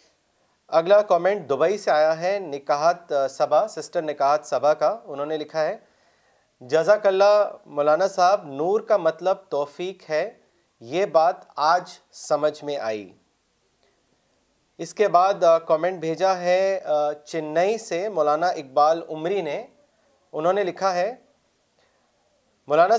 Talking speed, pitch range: 125 wpm, 150-195 Hz